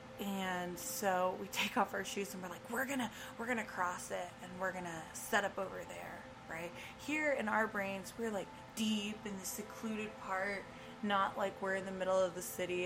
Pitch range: 185-225 Hz